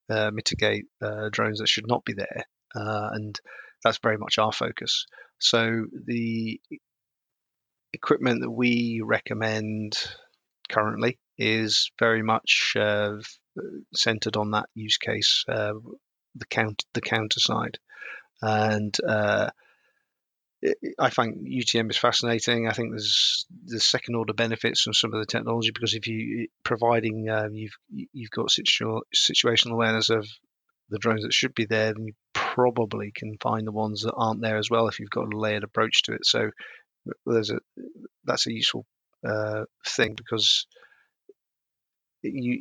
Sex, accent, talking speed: male, British, 145 wpm